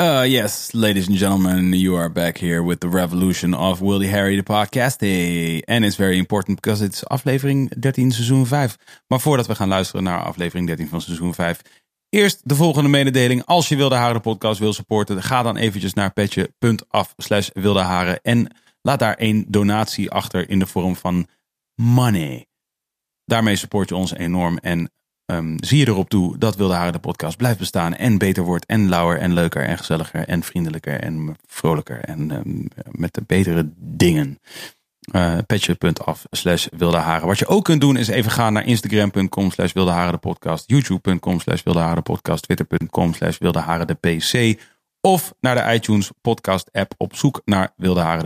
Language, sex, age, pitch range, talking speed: Dutch, male, 30-49, 90-115 Hz, 180 wpm